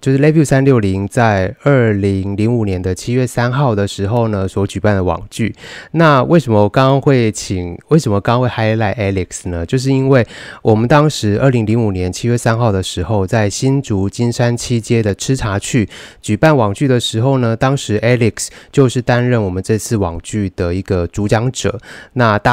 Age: 20-39